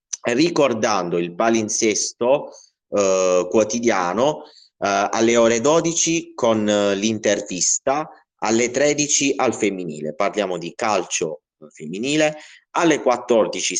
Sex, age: male, 30-49